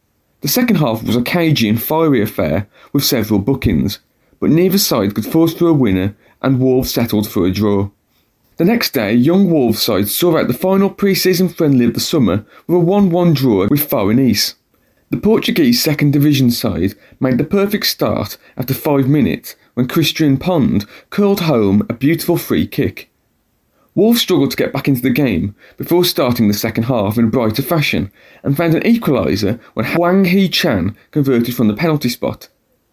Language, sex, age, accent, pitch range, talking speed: English, male, 40-59, British, 115-170 Hz, 180 wpm